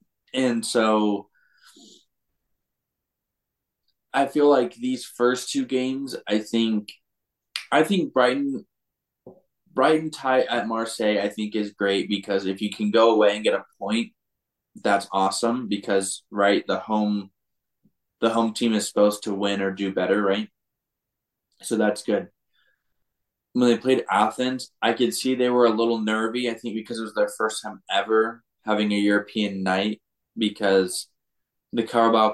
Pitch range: 105-120 Hz